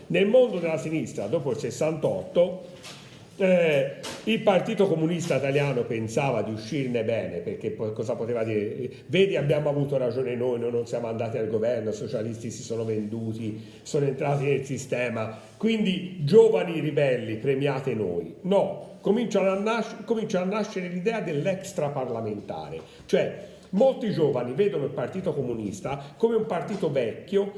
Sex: male